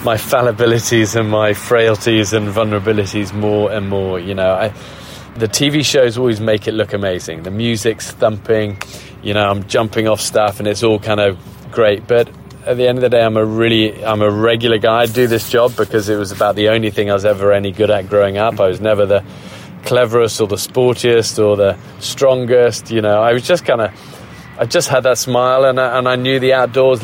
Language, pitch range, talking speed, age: German, 110-130 Hz, 215 wpm, 20-39